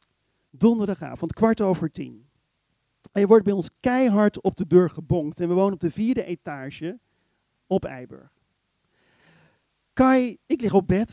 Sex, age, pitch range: male, 40-59, 150-205 Hz